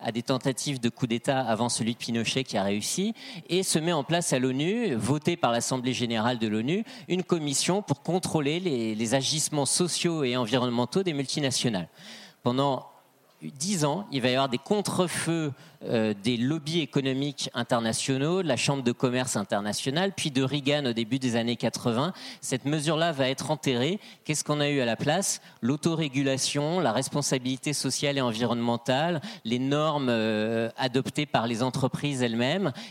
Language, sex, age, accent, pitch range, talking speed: French, male, 40-59, French, 125-170 Hz, 170 wpm